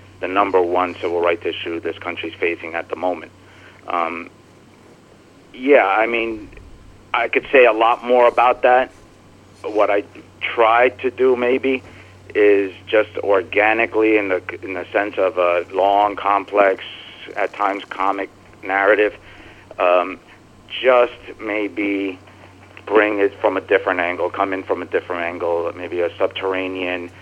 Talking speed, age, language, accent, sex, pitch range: 140 wpm, 50-69, English, American, male, 90-115 Hz